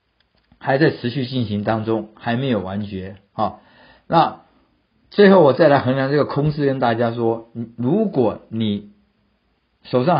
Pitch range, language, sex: 110-145 Hz, Chinese, male